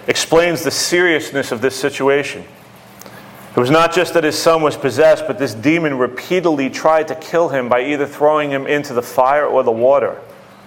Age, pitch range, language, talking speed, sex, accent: 40-59, 115-140 Hz, English, 185 wpm, male, American